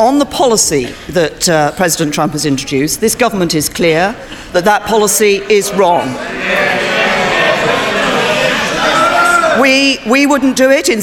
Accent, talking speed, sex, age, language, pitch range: British, 130 wpm, female, 40-59, English, 195-265 Hz